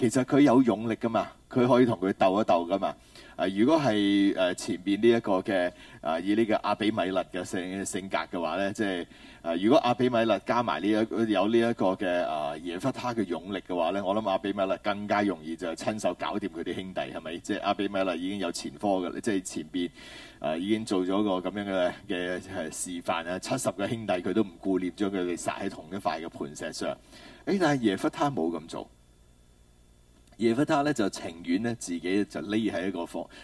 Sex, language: male, Chinese